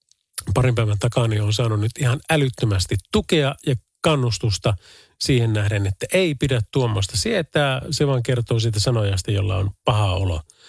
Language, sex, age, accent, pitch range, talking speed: Finnish, male, 40-59, native, 100-140 Hz, 150 wpm